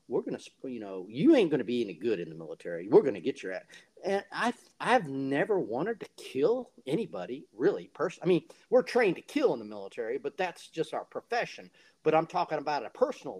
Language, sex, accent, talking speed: English, male, American, 230 wpm